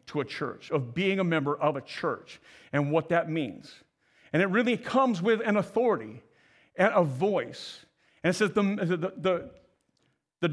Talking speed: 175 wpm